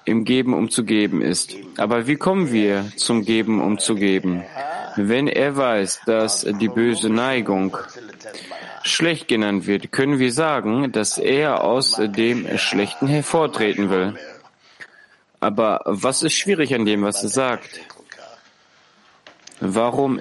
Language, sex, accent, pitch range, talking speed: German, male, German, 105-130 Hz, 120 wpm